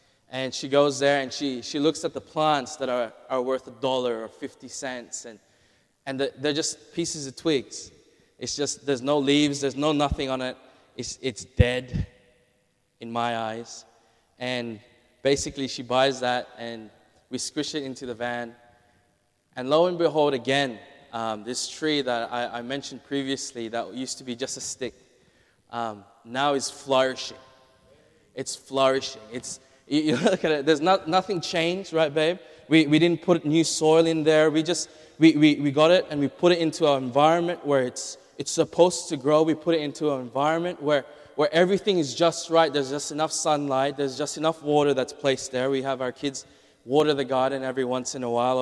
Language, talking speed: English, 190 wpm